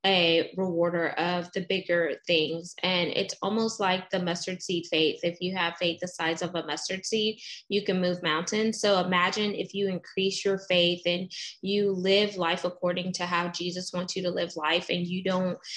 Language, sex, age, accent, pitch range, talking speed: English, female, 20-39, American, 175-195 Hz, 195 wpm